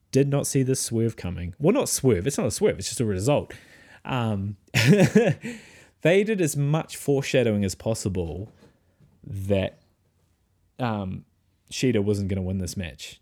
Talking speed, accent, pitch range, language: 155 wpm, Australian, 95-115 Hz, English